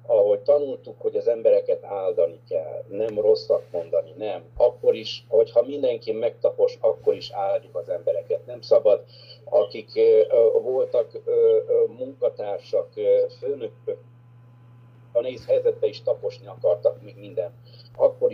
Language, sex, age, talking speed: Hungarian, male, 60-79, 125 wpm